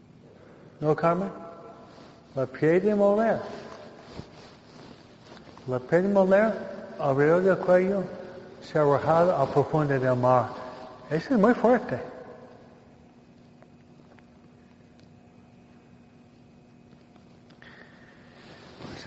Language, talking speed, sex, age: Spanish, 75 wpm, male, 60-79